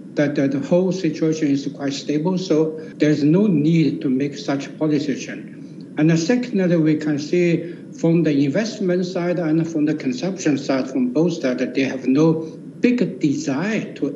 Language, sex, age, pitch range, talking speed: English, male, 60-79, 150-180 Hz, 165 wpm